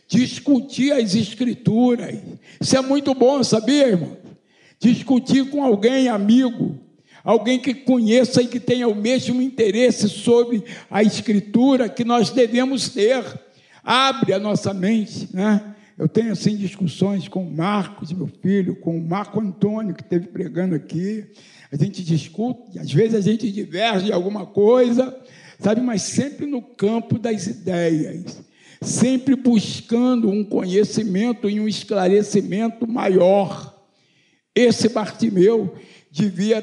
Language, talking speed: Portuguese, 130 wpm